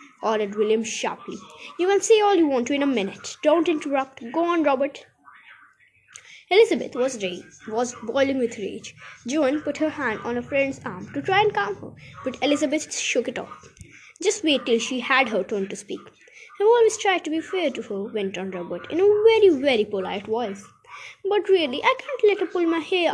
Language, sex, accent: Hindi, female, native